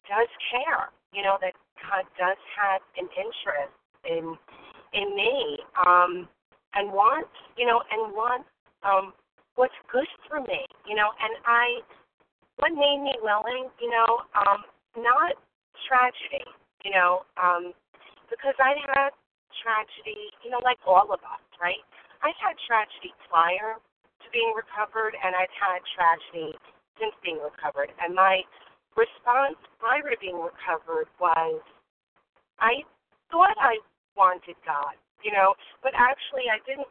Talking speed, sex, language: 140 wpm, female, English